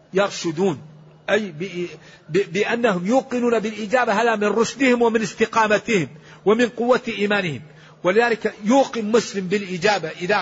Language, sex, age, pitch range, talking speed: Arabic, male, 50-69, 160-215 Hz, 115 wpm